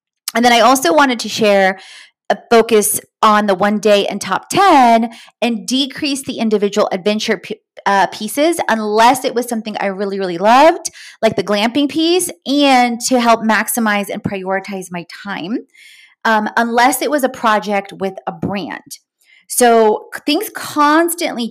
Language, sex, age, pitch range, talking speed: English, female, 30-49, 205-260 Hz, 155 wpm